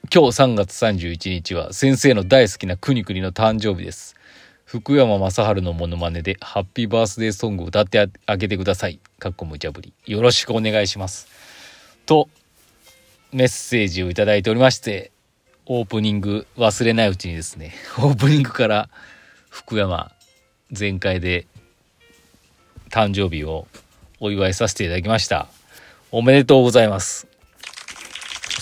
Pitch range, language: 90-120 Hz, Japanese